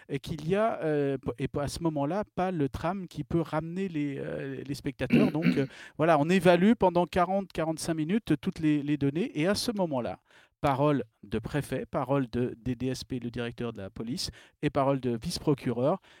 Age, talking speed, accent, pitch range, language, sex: 40-59, 185 wpm, French, 130-170 Hz, French, male